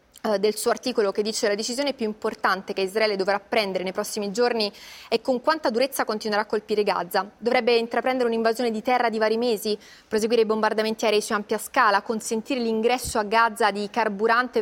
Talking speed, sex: 185 wpm, female